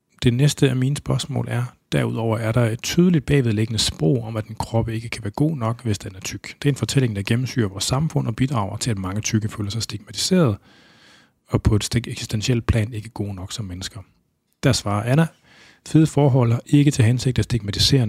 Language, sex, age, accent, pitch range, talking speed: Danish, male, 30-49, native, 100-120 Hz, 210 wpm